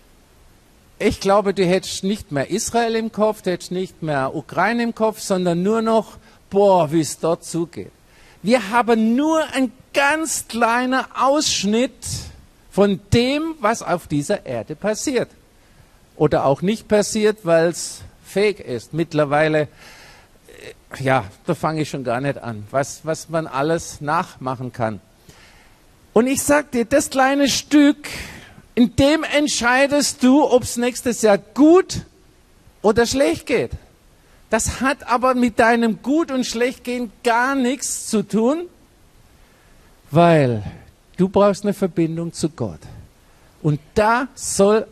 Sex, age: male, 50-69